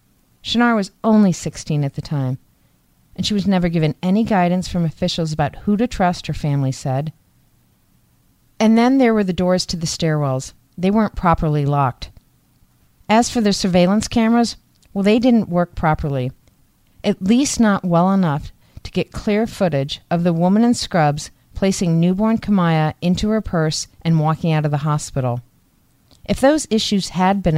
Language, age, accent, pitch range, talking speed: English, 40-59, American, 160-215 Hz, 170 wpm